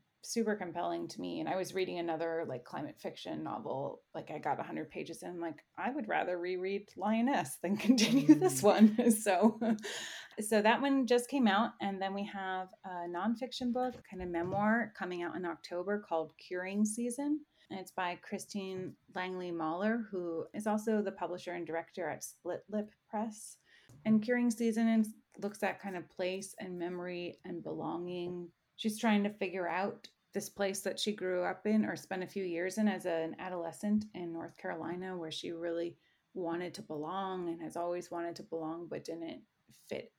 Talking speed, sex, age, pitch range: 180 wpm, female, 30-49, 170-215 Hz